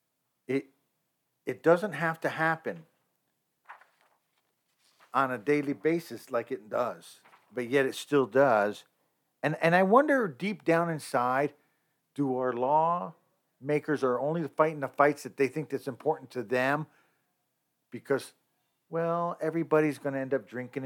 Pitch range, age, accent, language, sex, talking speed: 130-165 Hz, 50-69, American, English, male, 135 wpm